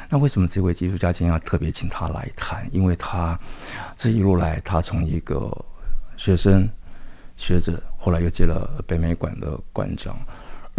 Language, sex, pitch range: Chinese, male, 85-105 Hz